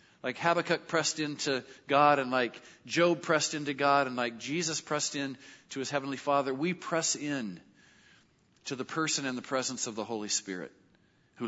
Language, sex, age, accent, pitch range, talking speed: English, male, 50-69, American, 125-170 Hz, 180 wpm